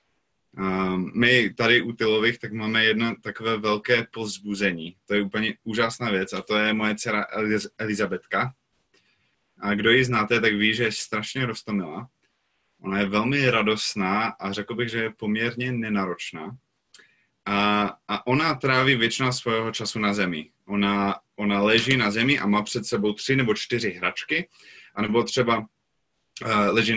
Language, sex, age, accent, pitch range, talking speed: Czech, male, 20-39, native, 105-135 Hz, 150 wpm